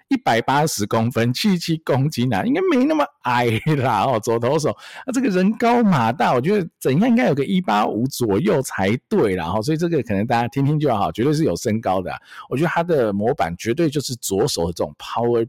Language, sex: Chinese, male